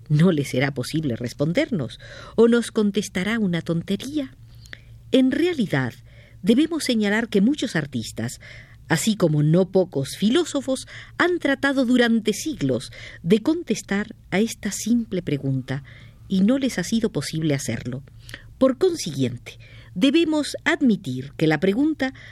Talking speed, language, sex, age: 125 wpm, Spanish, female, 50-69